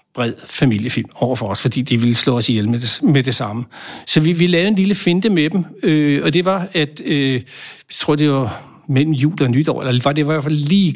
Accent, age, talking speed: Danish, 60-79, 265 wpm